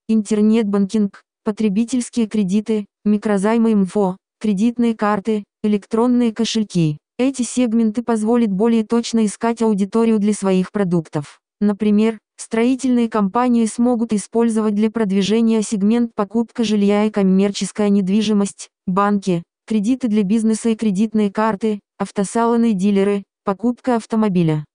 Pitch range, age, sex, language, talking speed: 205-230 Hz, 20-39, female, Russian, 105 wpm